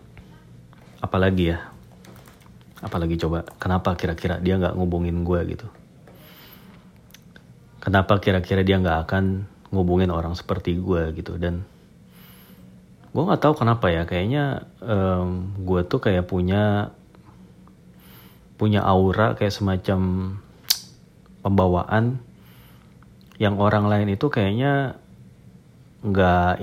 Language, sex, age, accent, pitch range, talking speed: Indonesian, male, 30-49, native, 90-105 Hz, 100 wpm